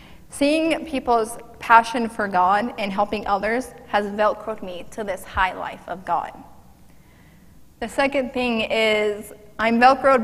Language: English